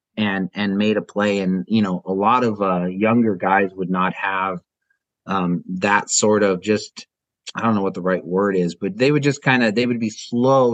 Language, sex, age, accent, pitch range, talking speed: English, male, 30-49, American, 95-110 Hz, 225 wpm